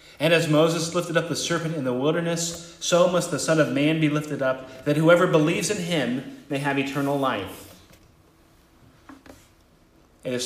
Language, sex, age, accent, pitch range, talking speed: English, male, 30-49, American, 130-170 Hz, 170 wpm